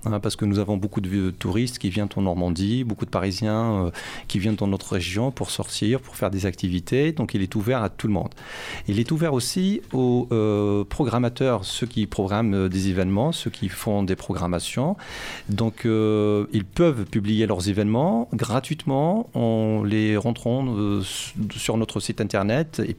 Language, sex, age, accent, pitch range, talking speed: French, male, 40-59, French, 100-120 Hz, 175 wpm